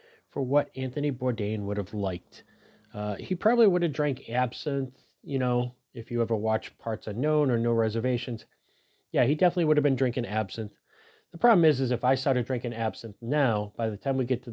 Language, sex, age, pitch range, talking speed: English, male, 30-49, 115-145 Hz, 200 wpm